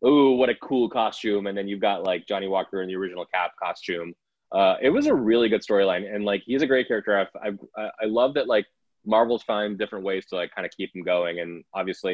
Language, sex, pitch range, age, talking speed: English, male, 95-110 Hz, 20-39, 240 wpm